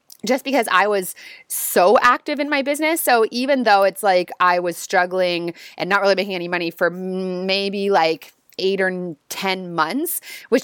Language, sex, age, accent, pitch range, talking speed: English, female, 20-39, American, 185-240 Hz, 175 wpm